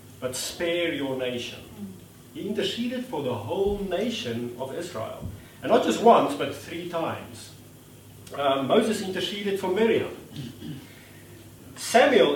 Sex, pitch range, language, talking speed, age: male, 120-170 Hz, English, 120 wpm, 40-59